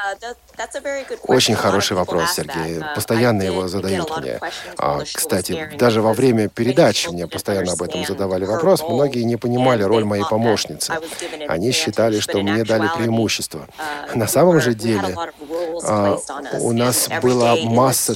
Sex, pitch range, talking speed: male, 105-140 Hz, 130 wpm